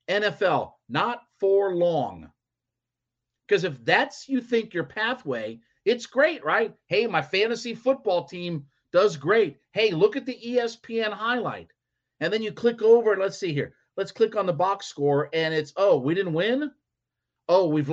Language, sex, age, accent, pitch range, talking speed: English, male, 50-69, American, 150-240 Hz, 165 wpm